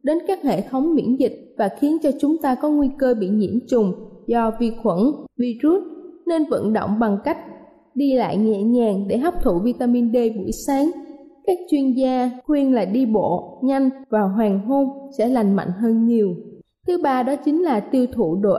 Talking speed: 195 wpm